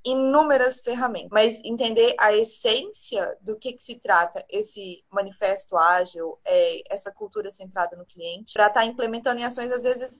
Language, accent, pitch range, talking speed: Portuguese, Brazilian, 200-250 Hz, 155 wpm